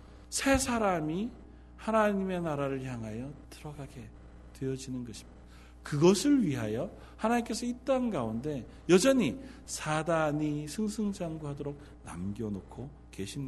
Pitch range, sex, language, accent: 120-175 Hz, male, Korean, native